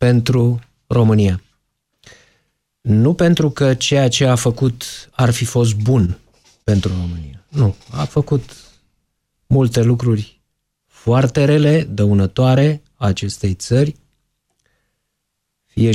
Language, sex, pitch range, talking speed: Romanian, male, 105-130 Hz, 100 wpm